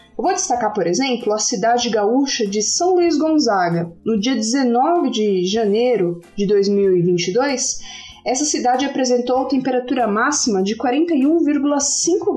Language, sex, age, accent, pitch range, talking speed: Portuguese, female, 30-49, Brazilian, 220-320 Hz, 125 wpm